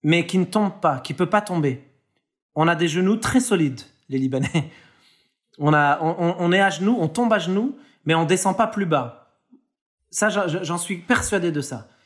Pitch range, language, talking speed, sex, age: 155-200 Hz, Arabic, 205 wpm, male, 30-49